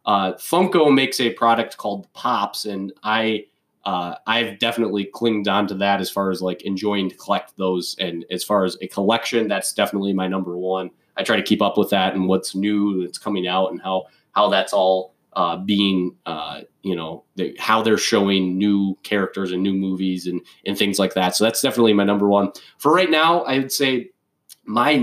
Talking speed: 205 wpm